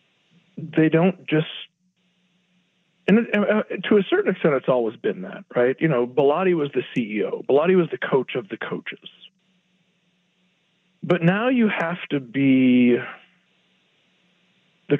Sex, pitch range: male, 155-190 Hz